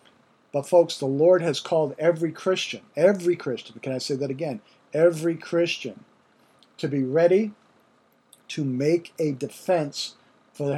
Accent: American